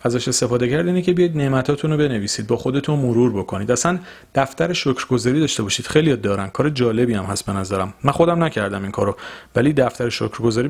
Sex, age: male, 40-59